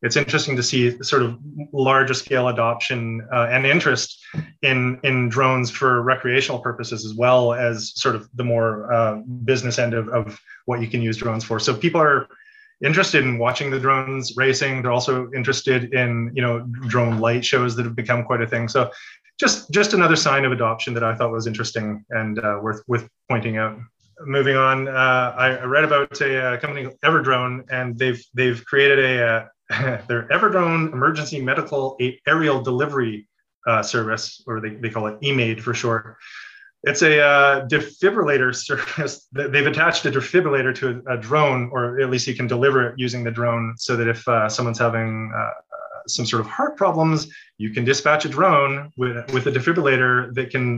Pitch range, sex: 115-140 Hz, male